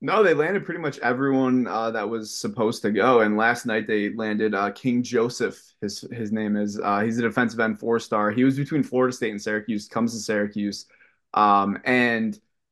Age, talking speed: 20-39, 200 wpm